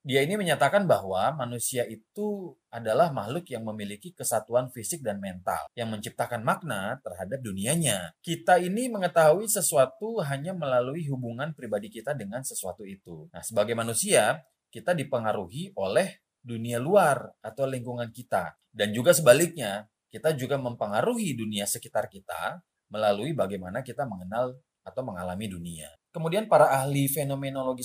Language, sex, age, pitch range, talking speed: Indonesian, male, 30-49, 105-160 Hz, 135 wpm